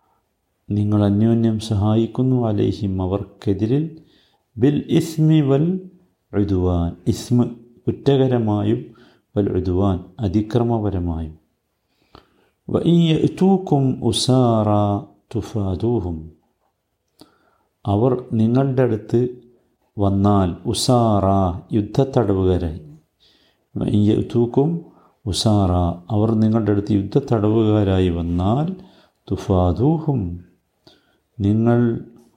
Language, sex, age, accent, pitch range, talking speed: Malayalam, male, 50-69, native, 95-125 Hz, 60 wpm